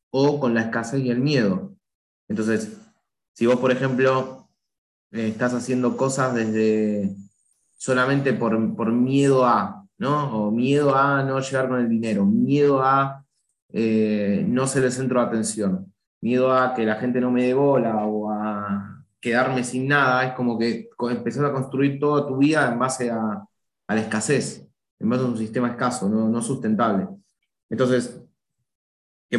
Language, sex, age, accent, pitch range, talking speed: Spanish, male, 20-39, Argentinian, 115-145 Hz, 160 wpm